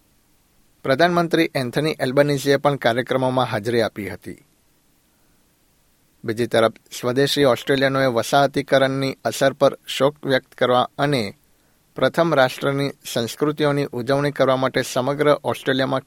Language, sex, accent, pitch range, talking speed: Gujarati, male, native, 120-140 Hz, 100 wpm